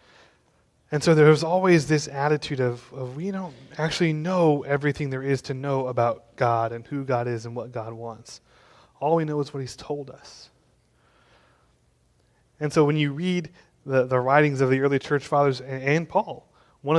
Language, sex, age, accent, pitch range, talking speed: English, male, 20-39, American, 120-145 Hz, 185 wpm